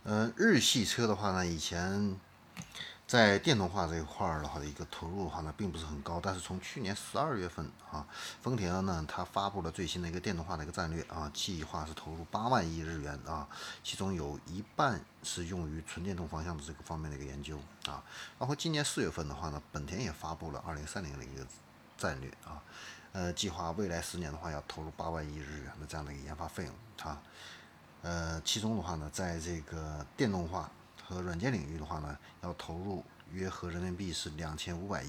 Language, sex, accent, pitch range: Chinese, male, native, 75-95 Hz